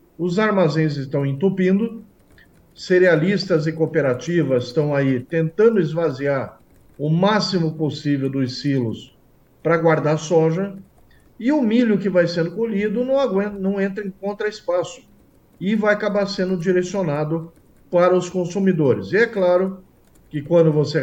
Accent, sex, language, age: Brazilian, male, Portuguese, 50-69